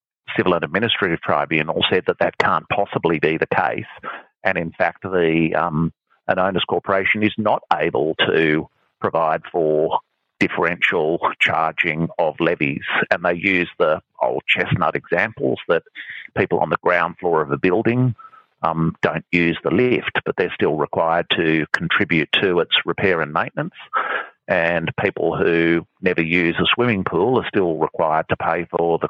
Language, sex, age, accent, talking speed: English, male, 40-59, Australian, 160 wpm